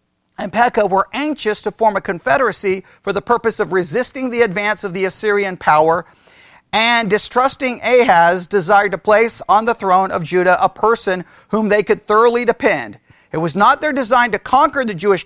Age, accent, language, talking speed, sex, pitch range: 40-59, American, English, 180 wpm, male, 170-225 Hz